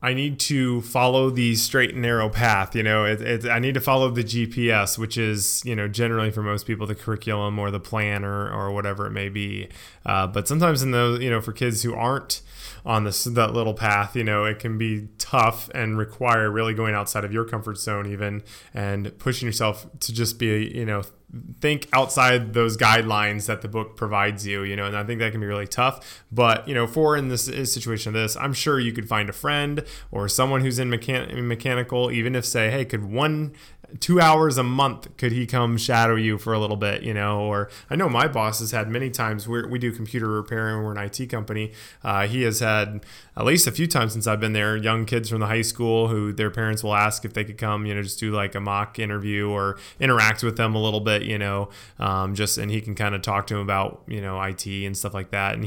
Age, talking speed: 20-39, 240 wpm